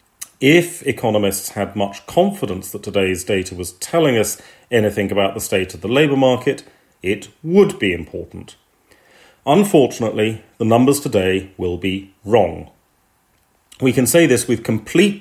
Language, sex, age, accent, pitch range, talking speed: English, male, 40-59, British, 95-120 Hz, 140 wpm